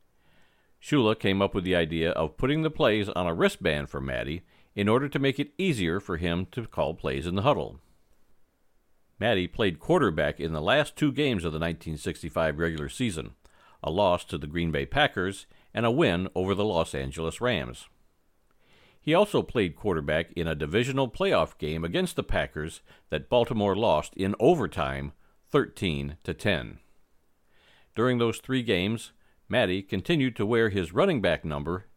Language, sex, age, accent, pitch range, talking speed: English, male, 50-69, American, 80-115 Hz, 165 wpm